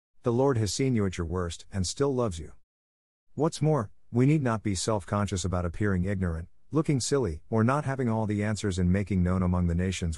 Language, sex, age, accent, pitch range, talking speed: English, male, 50-69, American, 85-125 Hz, 210 wpm